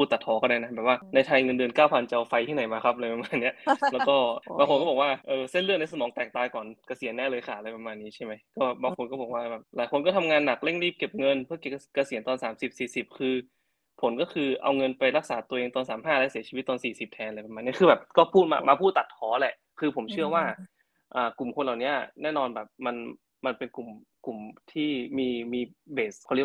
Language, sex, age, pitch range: Thai, male, 20-39, 120-145 Hz